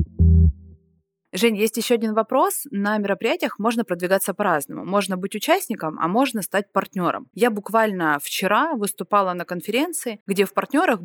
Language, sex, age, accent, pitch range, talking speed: Russian, female, 20-39, native, 185-260 Hz, 140 wpm